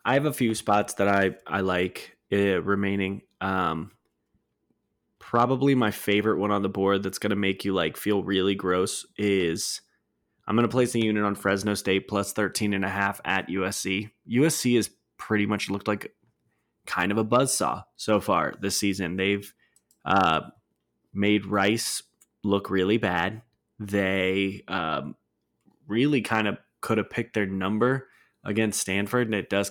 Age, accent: 20-39, American